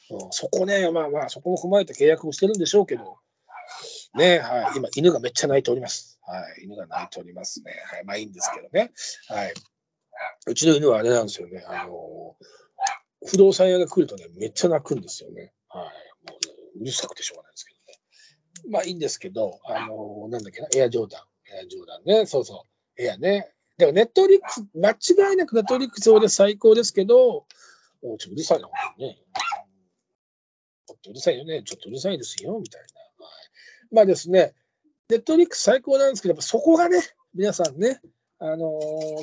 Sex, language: male, Japanese